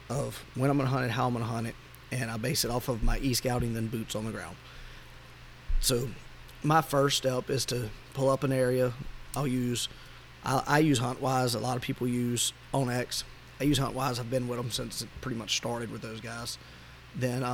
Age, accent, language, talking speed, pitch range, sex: 30-49, American, English, 215 wpm, 115-130 Hz, male